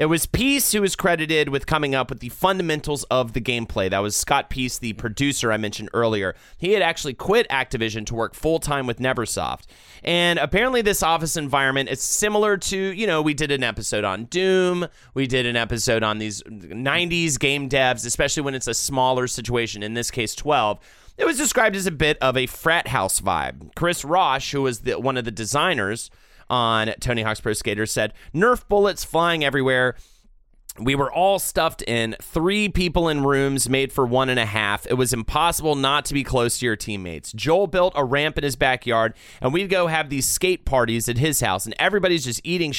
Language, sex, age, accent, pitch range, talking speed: English, male, 30-49, American, 120-165 Hz, 200 wpm